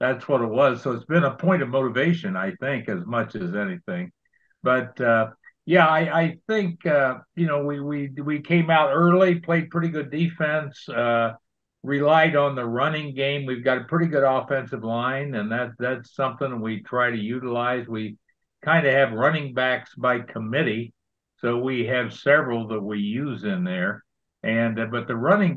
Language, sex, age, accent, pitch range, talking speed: English, male, 60-79, American, 120-155 Hz, 185 wpm